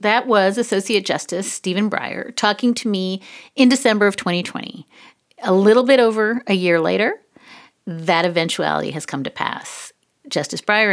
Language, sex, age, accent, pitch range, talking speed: English, female, 40-59, American, 180-240 Hz, 155 wpm